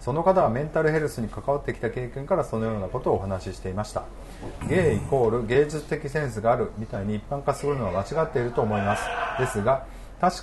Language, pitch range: Japanese, 110-150 Hz